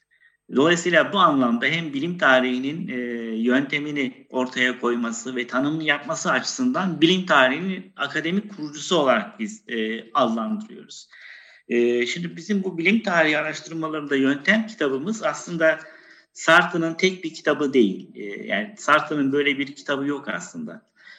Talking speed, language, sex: 125 wpm, Turkish, male